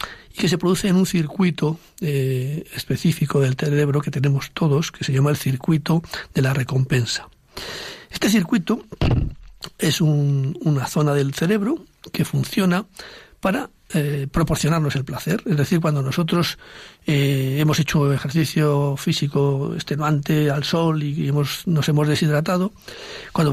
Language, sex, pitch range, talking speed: Spanish, male, 145-185 Hz, 140 wpm